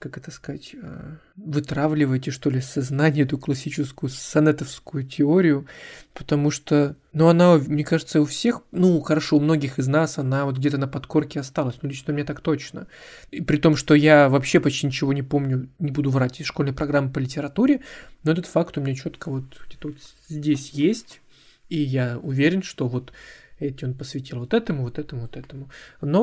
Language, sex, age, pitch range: Russian, male, 20-39, 140-165 Hz